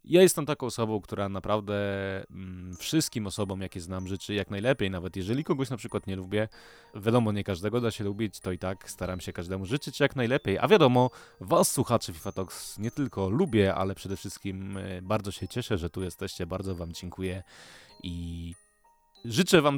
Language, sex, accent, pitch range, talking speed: Polish, male, native, 95-115 Hz, 180 wpm